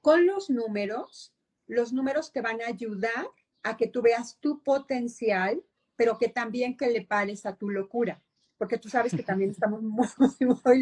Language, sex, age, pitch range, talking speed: Spanish, female, 40-59, 210-255 Hz, 175 wpm